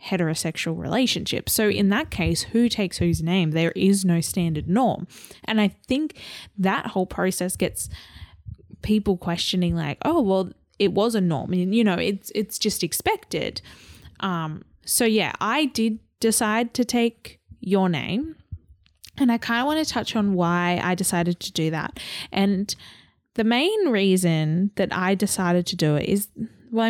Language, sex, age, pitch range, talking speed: English, female, 10-29, 175-220 Hz, 165 wpm